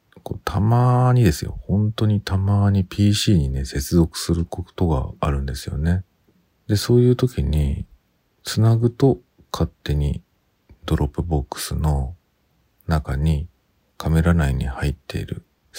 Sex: male